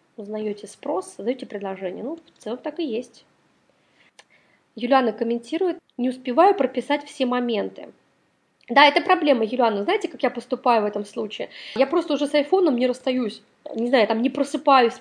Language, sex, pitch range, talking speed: Russian, female, 220-275 Hz, 160 wpm